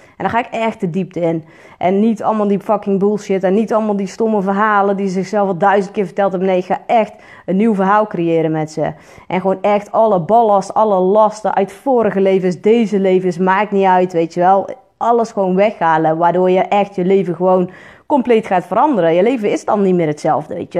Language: Dutch